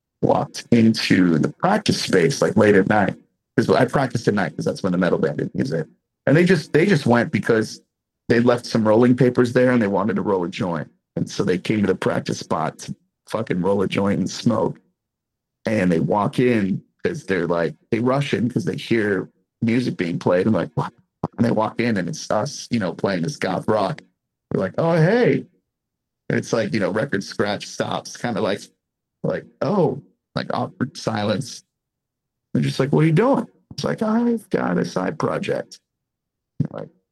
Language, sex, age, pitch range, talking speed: English, male, 40-59, 120-140 Hz, 200 wpm